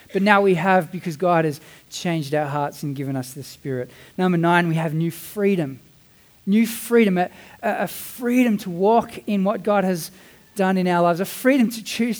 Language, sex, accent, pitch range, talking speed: English, male, Australian, 135-180 Hz, 195 wpm